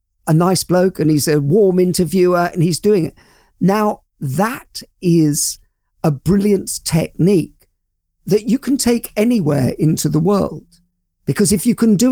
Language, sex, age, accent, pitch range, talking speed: English, male, 50-69, British, 150-205 Hz, 155 wpm